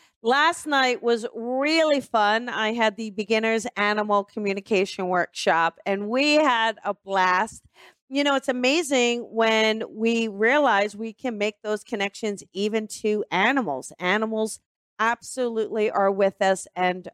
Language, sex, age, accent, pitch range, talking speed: English, female, 40-59, American, 205-265 Hz, 135 wpm